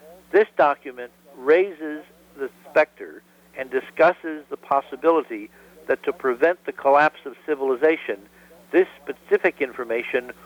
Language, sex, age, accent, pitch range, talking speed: English, male, 60-79, American, 130-185 Hz, 110 wpm